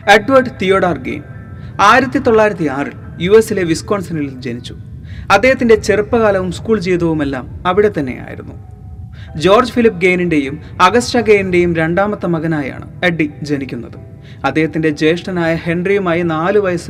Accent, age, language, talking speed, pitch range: native, 30-49, Malayalam, 110 wpm, 135-195 Hz